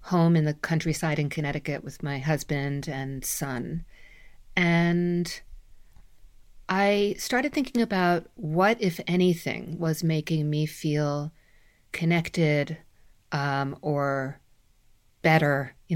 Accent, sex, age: American, female, 50-69